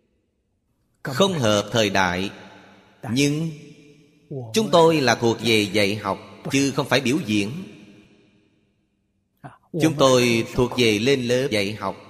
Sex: male